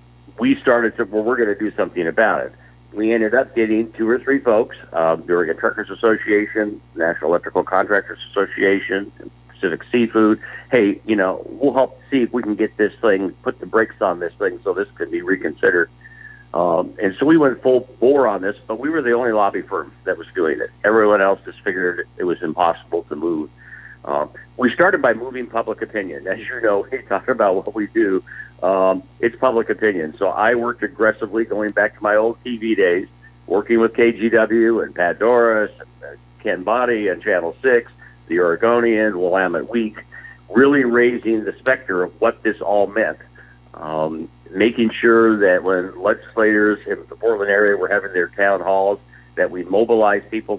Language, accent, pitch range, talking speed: English, American, 100-125 Hz, 185 wpm